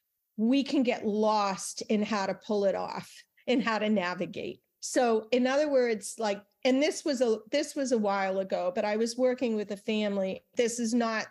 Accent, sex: American, female